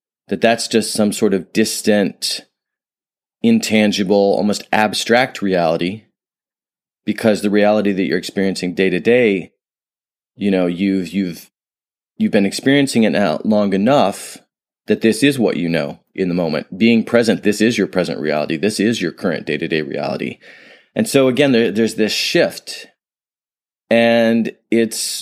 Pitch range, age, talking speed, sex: 90-110 Hz, 30-49, 145 wpm, male